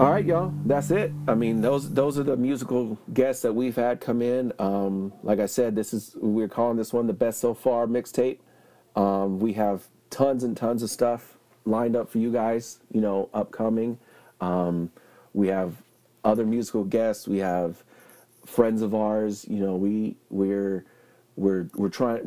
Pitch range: 95-115 Hz